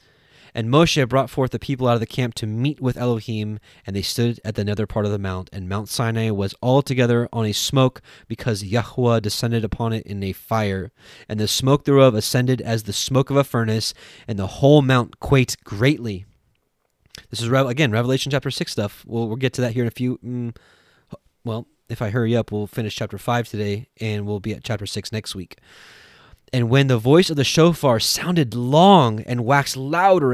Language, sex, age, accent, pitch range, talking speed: English, male, 20-39, American, 105-130 Hz, 205 wpm